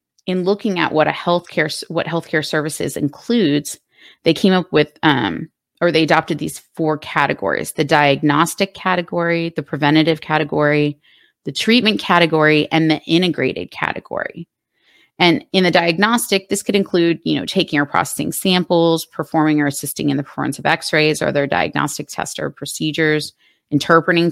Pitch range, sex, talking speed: 150-180 Hz, female, 155 wpm